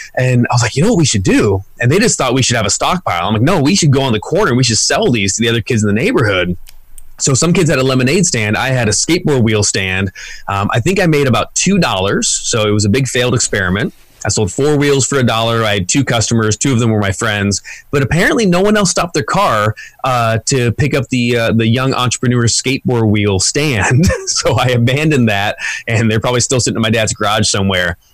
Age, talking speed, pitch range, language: 20-39, 245 wpm, 105-135 Hz, English